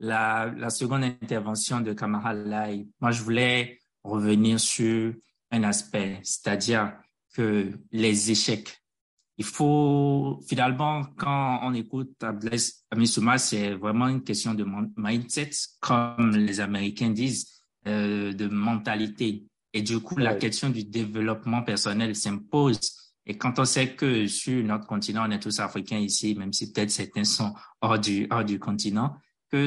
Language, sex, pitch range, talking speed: French, male, 105-120 Hz, 140 wpm